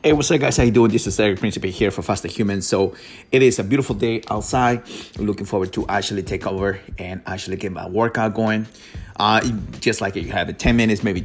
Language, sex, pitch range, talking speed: English, male, 95-110 Hz, 230 wpm